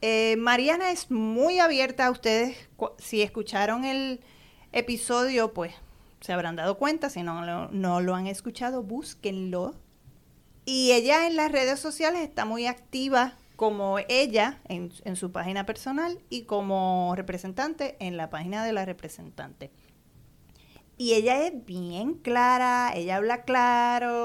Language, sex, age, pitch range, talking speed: Spanish, female, 30-49, 205-260 Hz, 140 wpm